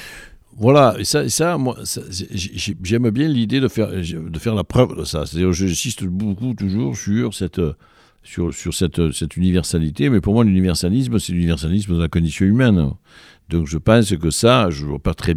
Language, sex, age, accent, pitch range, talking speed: French, male, 60-79, French, 75-110 Hz, 190 wpm